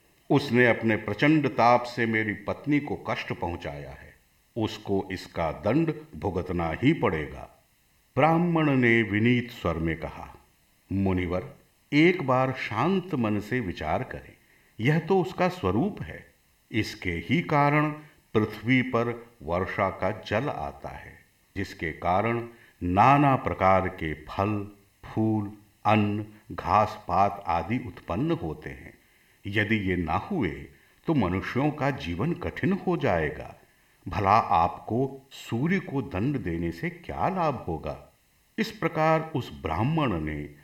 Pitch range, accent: 90-135 Hz, native